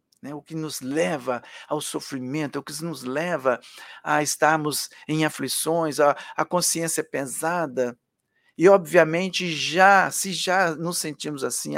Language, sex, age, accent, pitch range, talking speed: Portuguese, male, 60-79, Brazilian, 135-175 Hz, 145 wpm